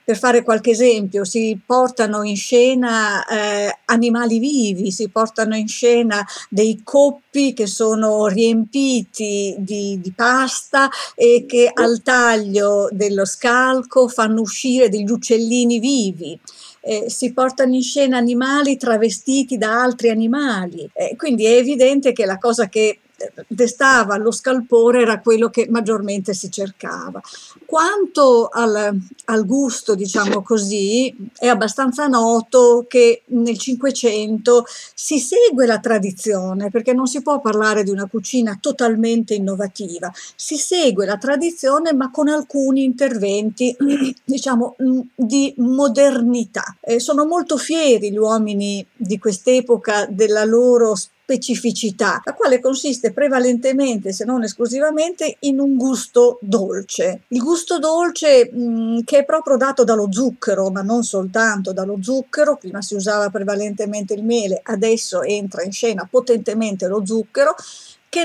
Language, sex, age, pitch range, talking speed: Italian, female, 50-69, 215-260 Hz, 130 wpm